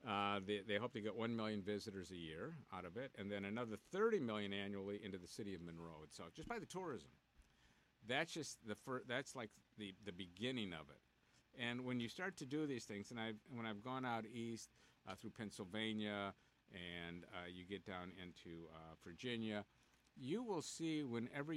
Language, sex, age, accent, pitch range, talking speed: English, male, 50-69, American, 100-125 Hz, 200 wpm